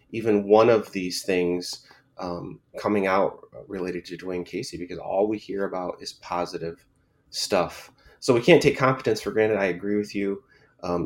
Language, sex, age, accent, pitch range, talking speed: English, male, 30-49, American, 90-105 Hz, 175 wpm